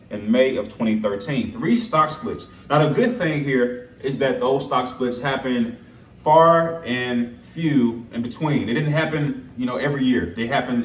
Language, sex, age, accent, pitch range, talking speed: English, male, 30-49, American, 125-165 Hz, 175 wpm